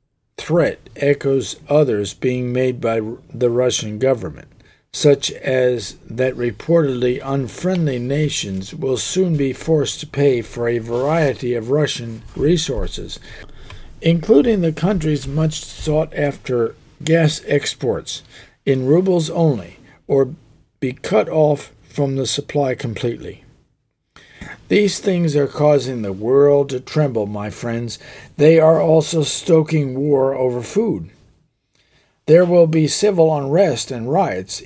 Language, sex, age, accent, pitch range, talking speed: English, male, 50-69, American, 125-155 Hz, 120 wpm